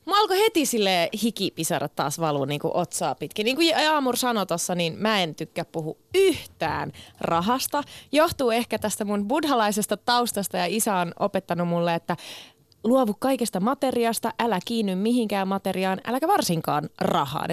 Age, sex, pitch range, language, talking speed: 20-39, female, 175-250 Hz, Finnish, 150 wpm